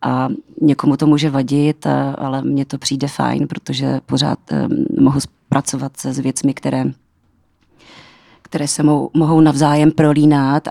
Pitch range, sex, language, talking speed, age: 135-155 Hz, female, Czech, 140 wpm, 40-59